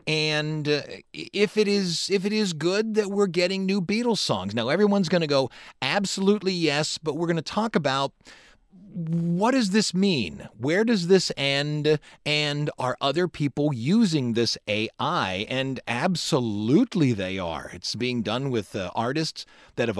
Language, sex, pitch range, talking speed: English, male, 130-180 Hz, 160 wpm